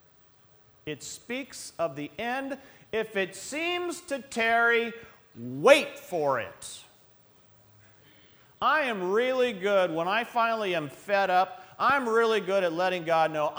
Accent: American